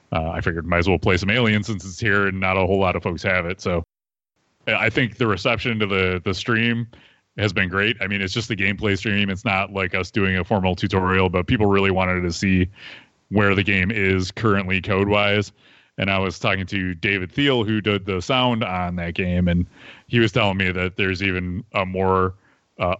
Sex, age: male, 30-49